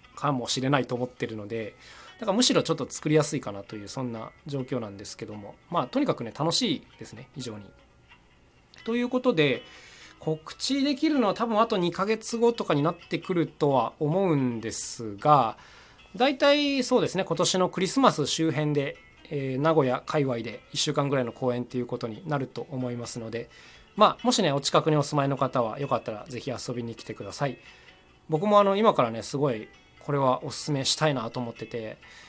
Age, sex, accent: 20-39, male, native